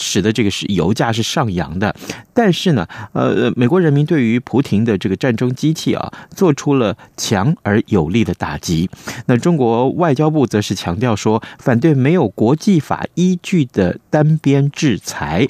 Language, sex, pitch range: Chinese, male, 105-155 Hz